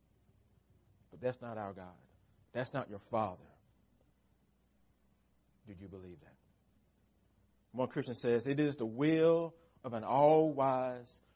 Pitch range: 100-140 Hz